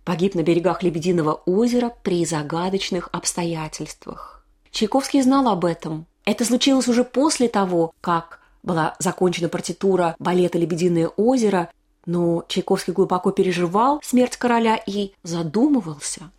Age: 20-39